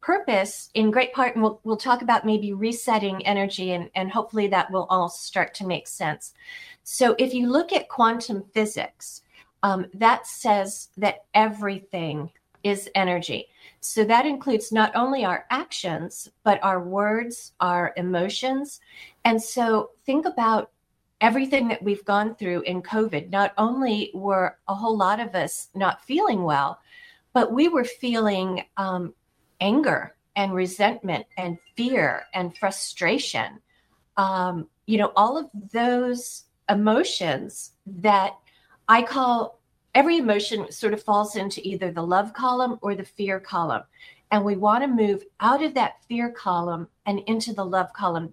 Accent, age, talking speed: American, 40-59, 150 wpm